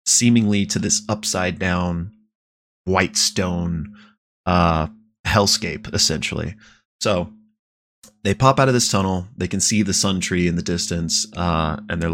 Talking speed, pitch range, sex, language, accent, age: 145 wpm, 90-110 Hz, male, English, American, 20-39